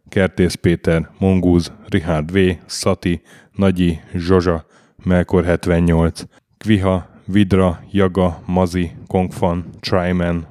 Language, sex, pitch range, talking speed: Hungarian, male, 85-95 Hz, 90 wpm